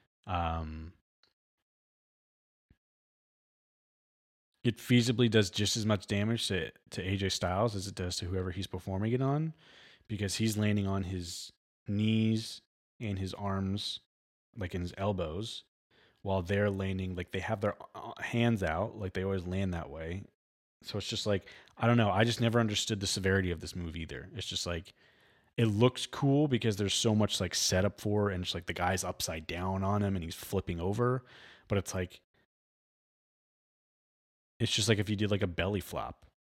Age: 20-39